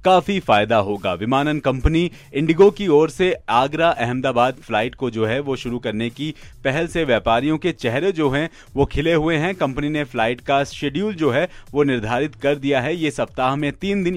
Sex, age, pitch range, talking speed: male, 30-49, 125-165 Hz, 200 wpm